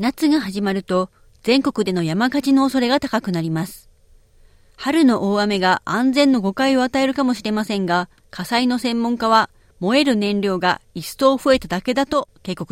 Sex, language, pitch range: female, Japanese, 195-265 Hz